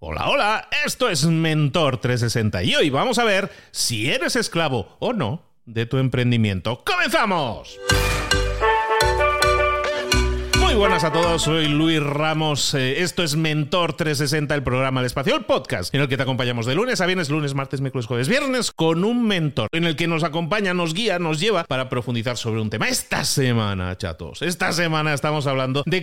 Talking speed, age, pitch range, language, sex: 175 wpm, 40-59, 115-165 Hz, Spanish, male